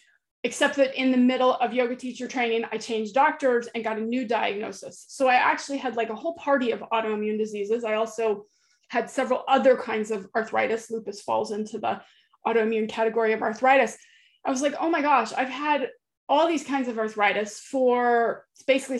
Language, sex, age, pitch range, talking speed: English, female, 30-49, 220-265 Hz, 185 wpm